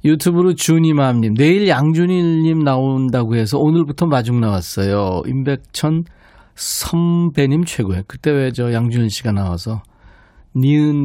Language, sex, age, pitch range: Korean, male, 40-59, 105-160 Hz